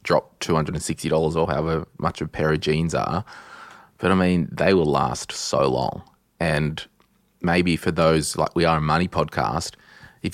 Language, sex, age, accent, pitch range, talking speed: English, male, 20-39, Australian, 75-90 Hz, 170 wpm